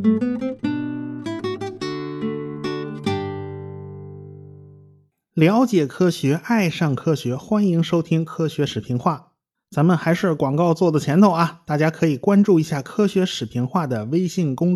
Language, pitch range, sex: Chinese, 135-200 Hz, male